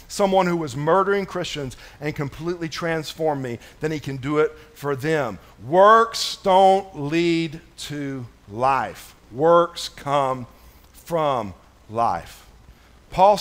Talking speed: 115 wpm